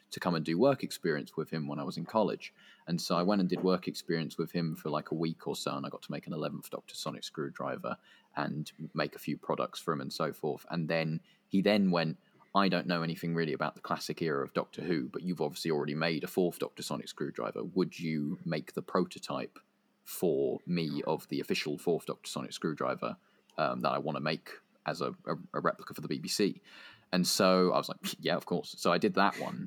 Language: English